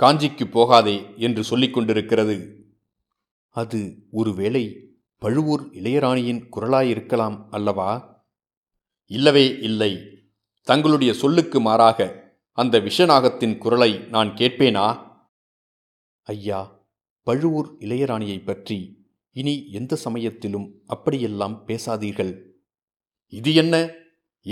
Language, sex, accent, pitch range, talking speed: Tamil, male, native, 105-135 Hz, 80 wpm